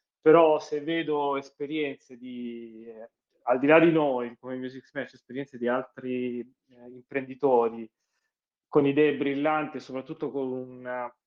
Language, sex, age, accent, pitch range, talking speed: Italian, male, 30-49, native, 120-140 Hz, 140 wpm